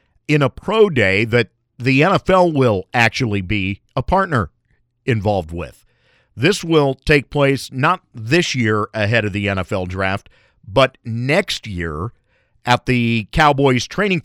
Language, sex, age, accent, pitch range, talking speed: English, male, 50-69, American, 115-150 Hz, 140 wpm